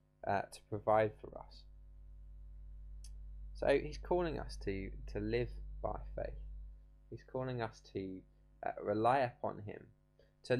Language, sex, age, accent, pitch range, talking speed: English, male, 20-39, British, 80-125 Hz, 130 wpm